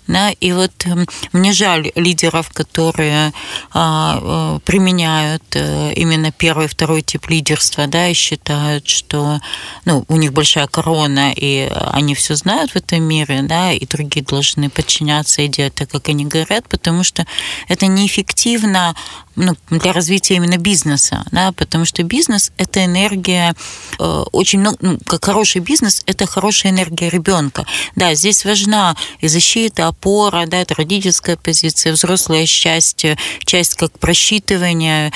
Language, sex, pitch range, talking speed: Russian, female, 155-185 Hz, 135 wpm